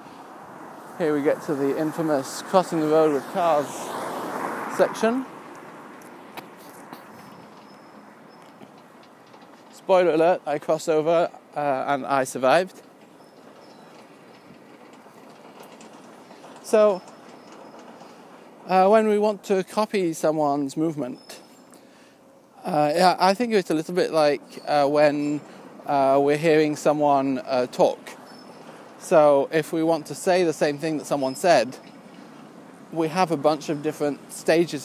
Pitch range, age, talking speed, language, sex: 145-185 Hz, 40-59, 110 wpm, English, male